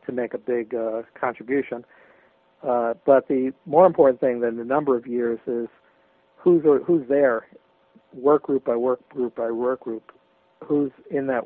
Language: English